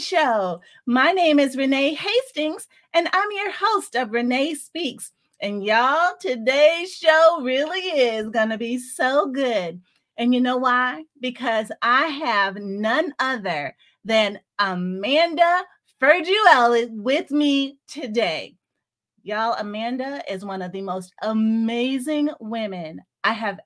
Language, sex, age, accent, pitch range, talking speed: English, female, 30-49, American, 215-310 Hz, 125 wpm